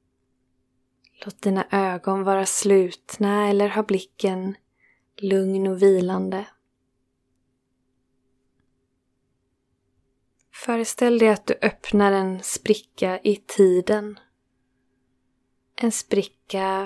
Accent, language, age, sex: native, Swedish, 20-39, female